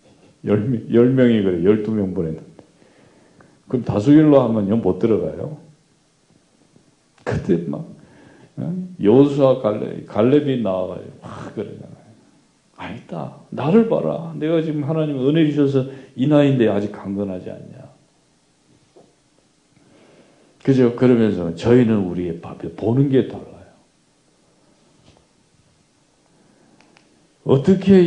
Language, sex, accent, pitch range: Korean, male, native, 95-140 Hz